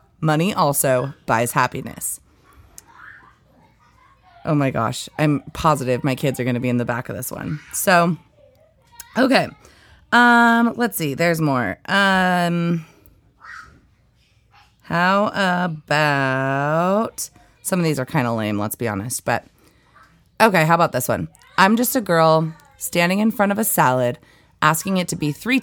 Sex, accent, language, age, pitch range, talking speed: female, American, English, 30-49, 130-175 Hz, 145 wpm